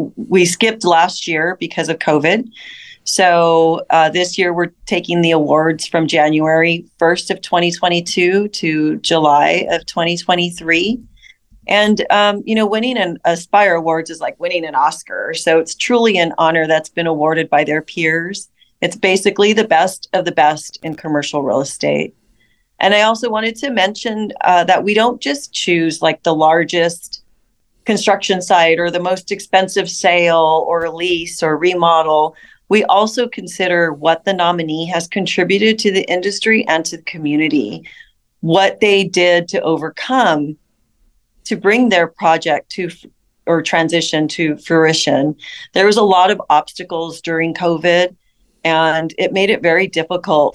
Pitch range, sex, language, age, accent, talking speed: 160-195 Hz, female, English, 40-59, American, 150 wpm